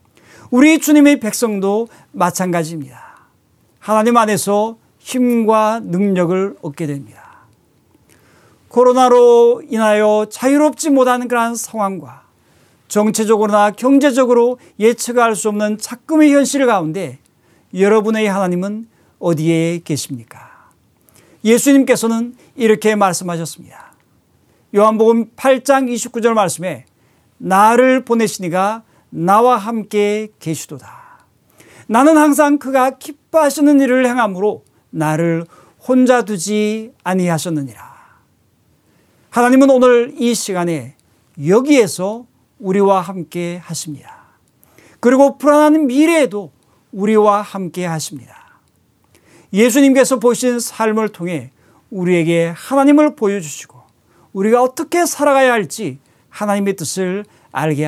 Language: English